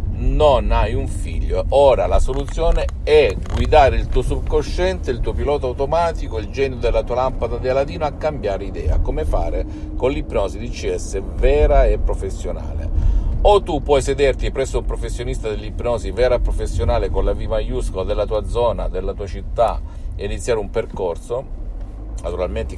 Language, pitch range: Italian, 85-115 Hz